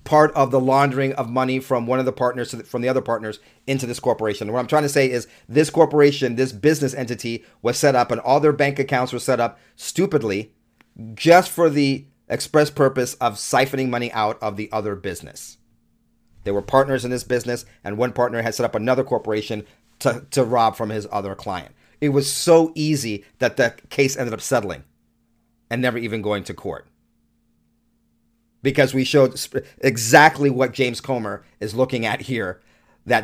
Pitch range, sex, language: 110-135 Hz, male, English